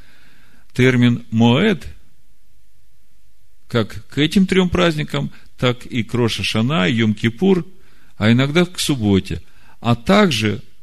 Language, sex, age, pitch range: Russian, male, 50-69, 95-125 Hz